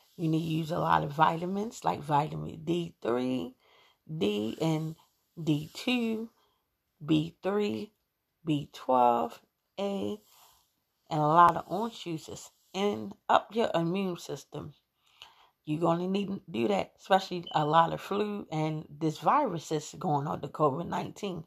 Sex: female